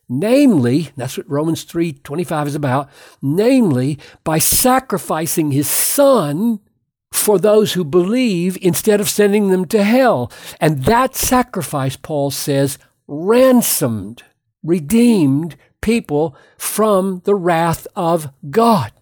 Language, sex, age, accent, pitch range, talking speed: English, male, 60-79, American, 145-215 Hz, 110 wpm